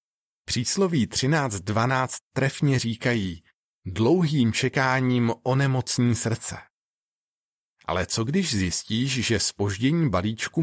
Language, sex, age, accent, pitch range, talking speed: Czech, male, 40-59, native, 100-135 Hz, 85 wpm